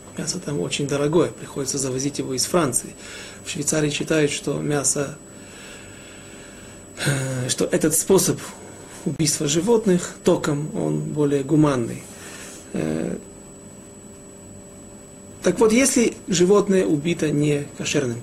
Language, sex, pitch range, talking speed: Russian, male, 140-170 Hz, 100 wpm